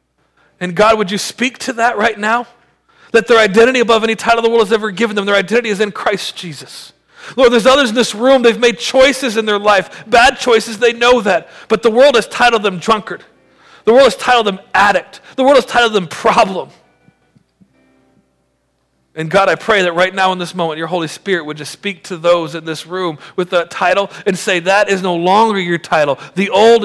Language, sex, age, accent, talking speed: English, male, 40-59, American, 215 wpm